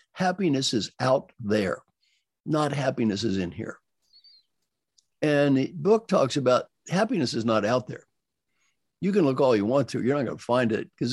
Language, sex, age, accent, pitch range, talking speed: English, male, 60-79, American, 130-175 Hz, 180 wpm